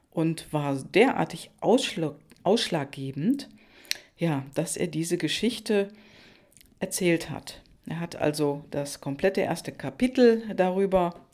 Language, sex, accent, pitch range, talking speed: German, female, German, 155-210 Hz, 95 wpm